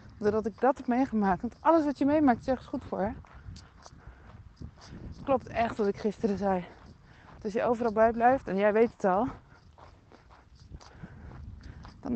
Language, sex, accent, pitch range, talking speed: Dutch, female, Dutch, 220-265 Hz, 160 wpm